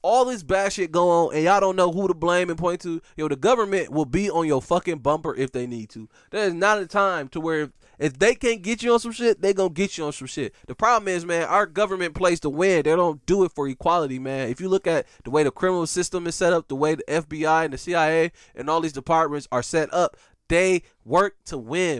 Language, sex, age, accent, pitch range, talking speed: English, male, 20-39, American, 150-190 Hz, 265 wpm